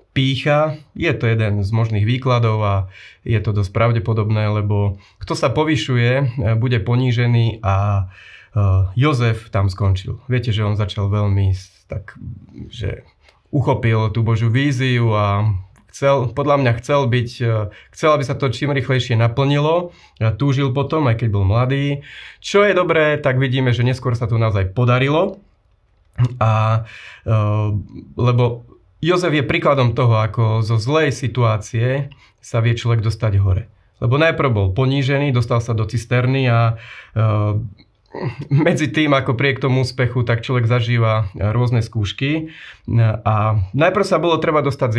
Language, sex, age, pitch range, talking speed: Slovak, male, 30-49, 105-135 Hz, 140 wpm